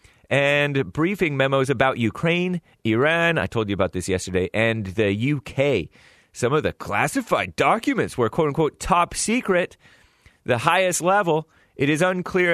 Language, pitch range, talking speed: English, 115-160 Hz, 135 wpm